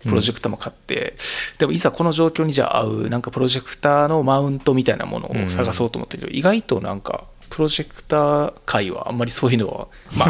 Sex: male